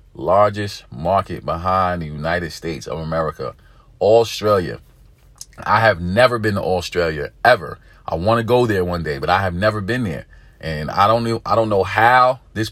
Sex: male